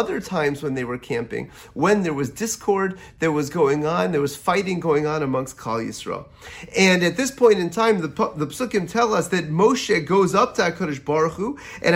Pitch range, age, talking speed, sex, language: 170-220 Hz, 30-49, 210 wpm, male, English